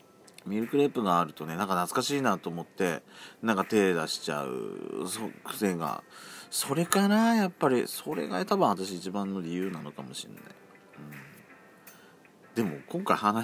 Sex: male